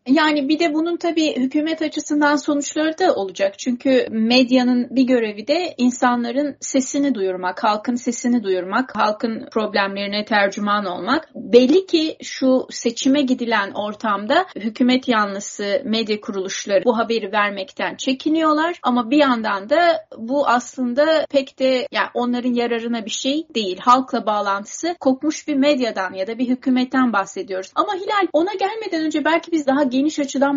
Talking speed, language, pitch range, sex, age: 145 wpm, Turkish, 220-295 Hz, female, 30-49